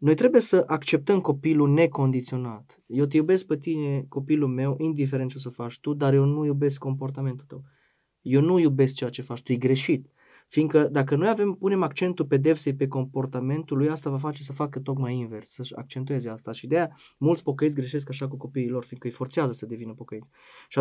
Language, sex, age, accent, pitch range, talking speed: Romanian, male, 20-39, native, 130-155 Hz, 200 wpm